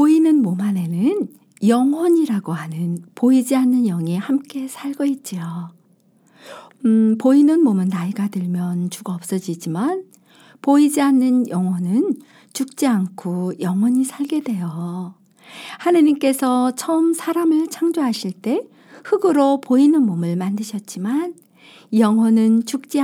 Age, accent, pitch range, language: 50-69, native, 190-275 Hz, Korean